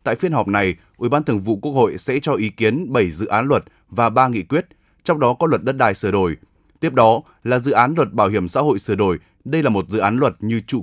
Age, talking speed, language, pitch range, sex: 20-39, 275 wpm, Vietnamese, 110-140 Hz, male